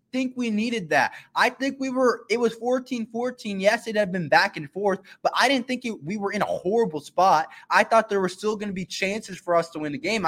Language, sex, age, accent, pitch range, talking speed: English, male, 20-39, American, 155-220 Hz, 250 wpm